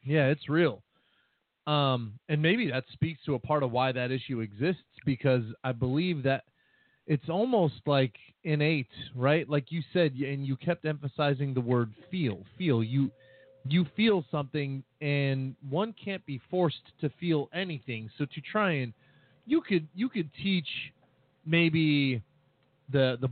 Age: 30-49